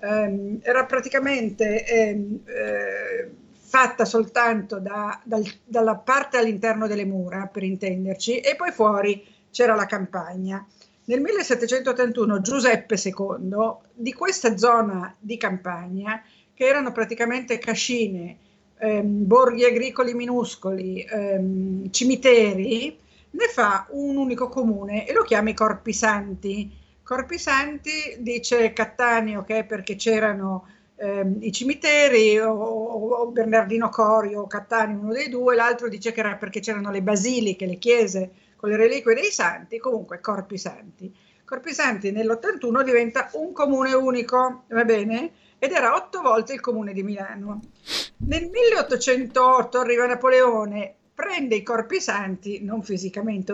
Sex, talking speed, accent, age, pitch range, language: female, 125 wpm, native, 50-69, 205-250 Hz, Italian